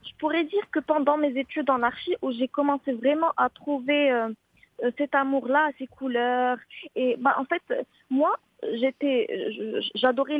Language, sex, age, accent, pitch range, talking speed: English, female, 20-39, French, 250-300 Hz, 160 wpm